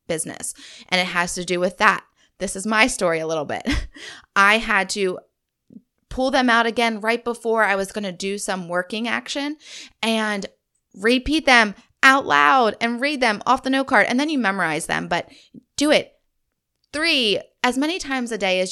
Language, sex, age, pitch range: English, female, 20-39, 180-235 Hz